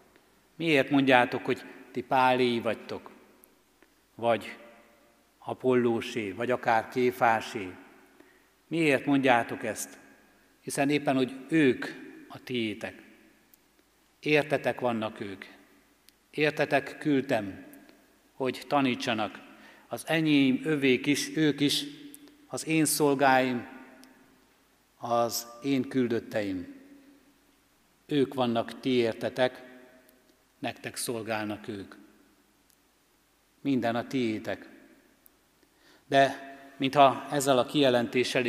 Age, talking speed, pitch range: 60-79, 85 wpm, 120-145 Hz